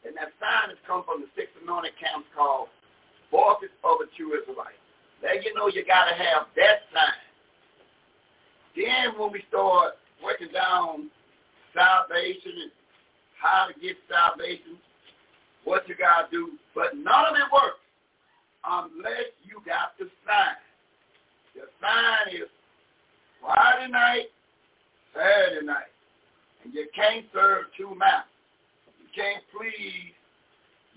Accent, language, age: American, English, 50-69